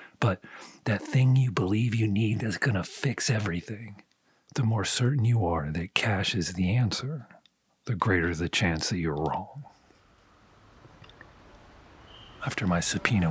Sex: male